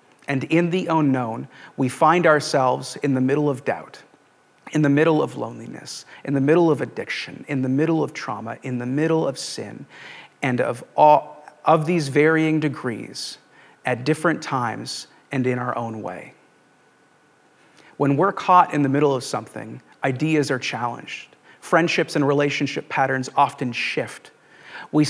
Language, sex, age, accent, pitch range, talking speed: English, male, 40-59, American, 130-160 Hz, 155 wpm